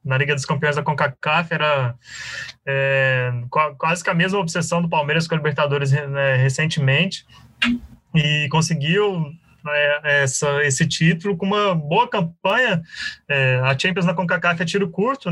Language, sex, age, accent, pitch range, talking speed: Portuguese, male, 20-39, Brazilian, 145-170 Hz, 150 wpm